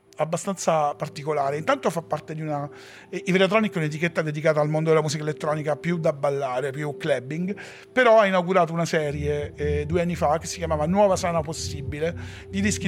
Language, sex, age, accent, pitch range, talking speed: Italian, male, 40-59, native, 115-185 Hz, 180 wpm